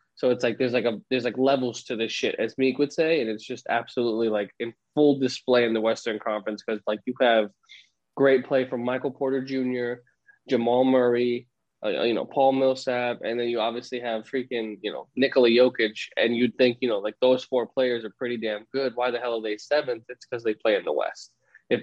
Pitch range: 115-130 Hz